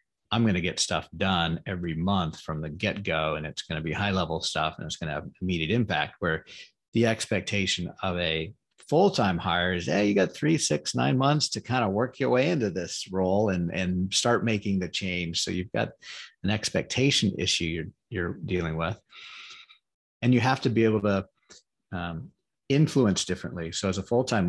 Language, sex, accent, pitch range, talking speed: English, male, American, 85-105 Hz, 195 wpm